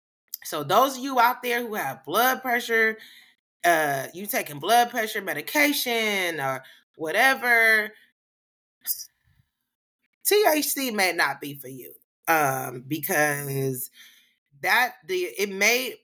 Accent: American